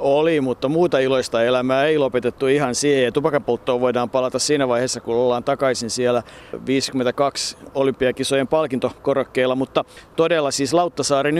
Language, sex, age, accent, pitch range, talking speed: Finnish, male, 50-69, native, 125-150 Hz, 130 wpm